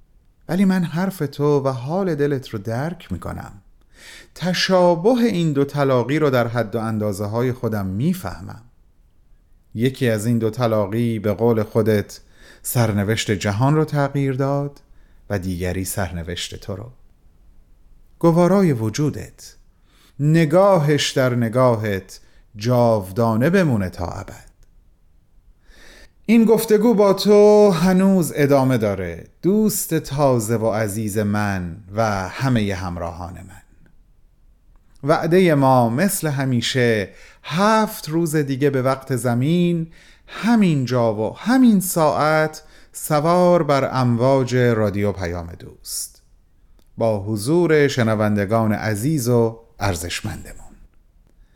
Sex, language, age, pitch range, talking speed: male, Persian, 30-49, 100-155 Hz, 110 wpm